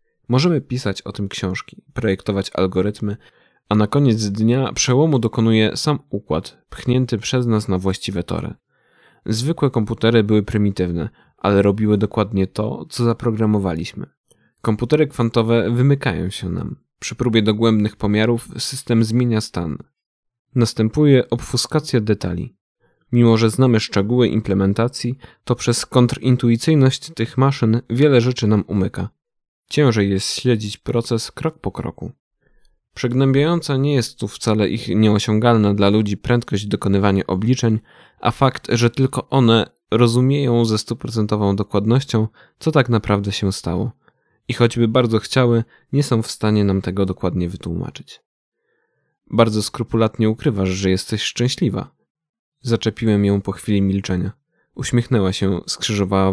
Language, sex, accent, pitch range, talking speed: Polish, male, native, 100-125 Hz, 125 wpm